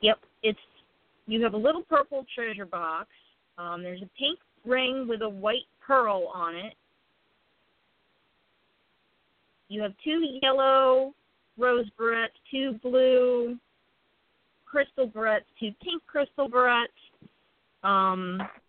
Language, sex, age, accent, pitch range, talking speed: English, female, 40-59, American, 205-260 Hz, 110 wpm